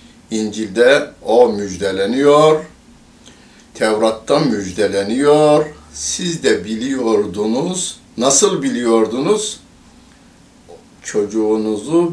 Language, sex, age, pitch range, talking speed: Turkish, male, 60-79, 100-160 Hz, 55 wpm